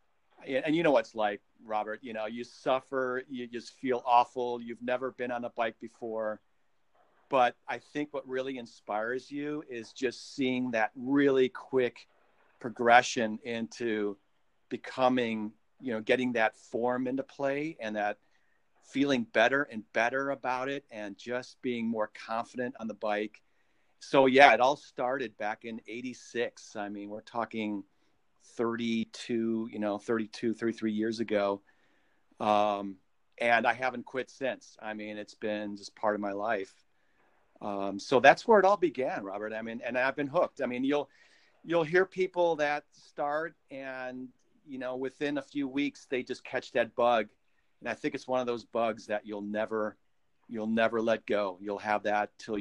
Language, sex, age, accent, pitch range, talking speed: English, male, 40-59, American, 105-130 Hz, 170 wpm